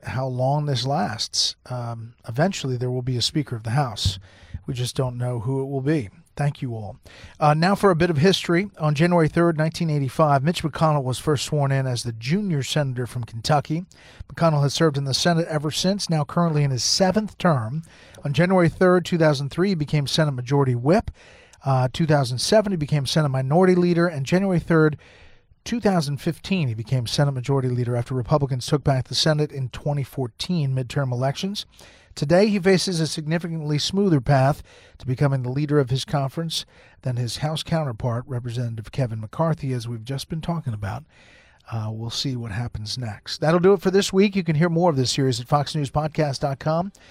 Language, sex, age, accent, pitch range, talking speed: English, male, 40-59, American, 125-165 Hz, 185 wpm